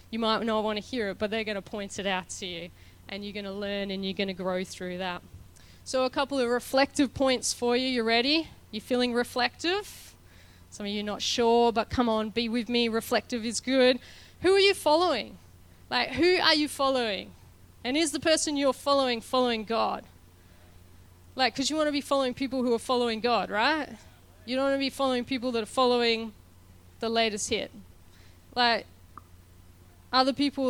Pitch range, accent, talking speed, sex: 190-250 Hz, Australian, 200 wpm, female